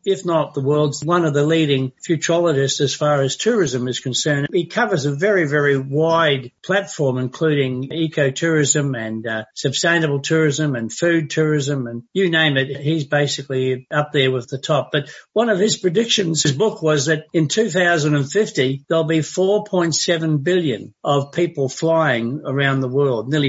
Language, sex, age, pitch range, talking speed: English, male, 60-79, 135-160 Hz, 165 wpm